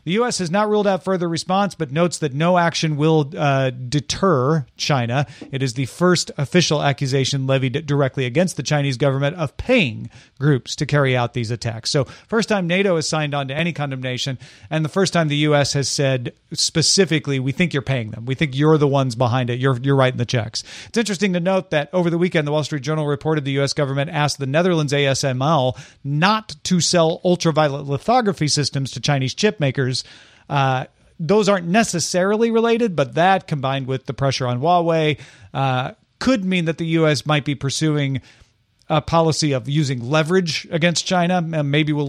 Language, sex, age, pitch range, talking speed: English, male, 40-59, 135-170 Hz, 190 wpm